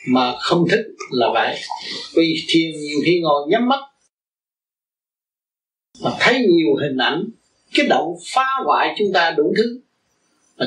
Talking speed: 145 wpm